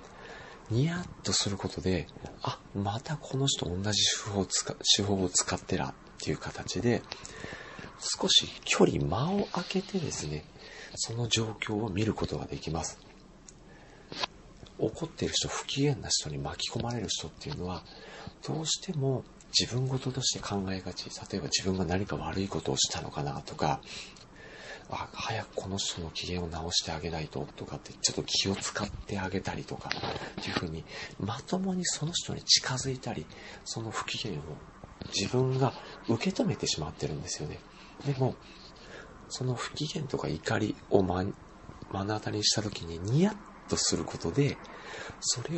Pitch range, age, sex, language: 95-135 Hz, 40-59, male, Japanese